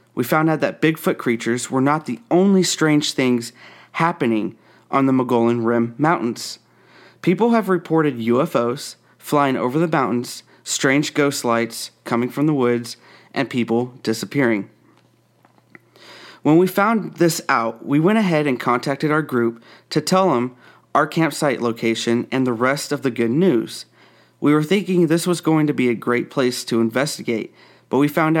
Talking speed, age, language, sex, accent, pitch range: 165 wpm, 30-49, English, male, American, 120-155 Hz